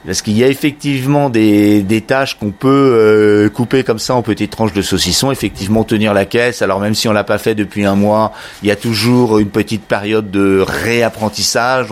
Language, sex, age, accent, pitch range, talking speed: French, male, 30-49, French, 95-110 Hz, 210 wpm